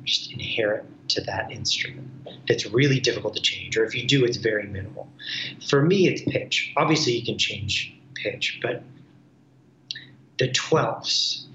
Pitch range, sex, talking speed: 120-145 Hz, male, 150 wpm